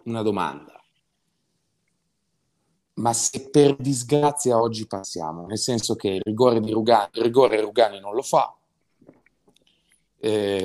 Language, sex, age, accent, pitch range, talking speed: Italian, male, 30-49, native, 100-130 Hz, 125 wpm